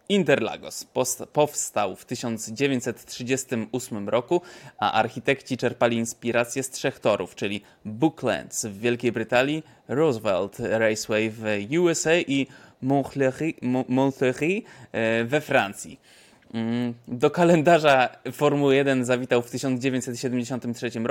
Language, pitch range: Polish, 110-130 Hz